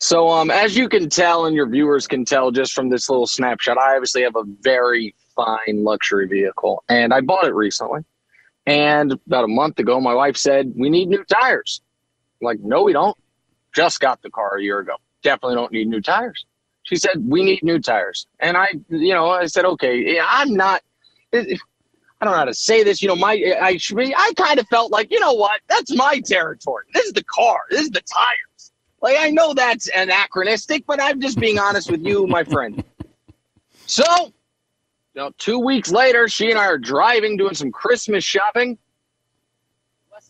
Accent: American